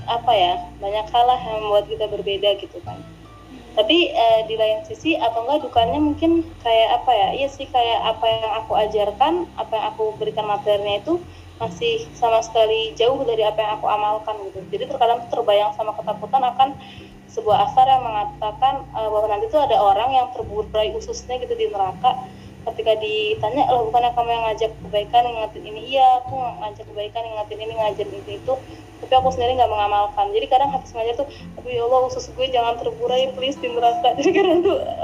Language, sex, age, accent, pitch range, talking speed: Indonesian, female, 20-39, native, 210-260 Hz, 190 wpm